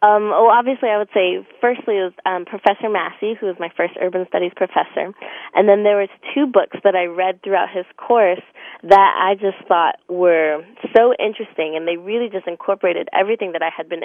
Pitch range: 180-230 Hz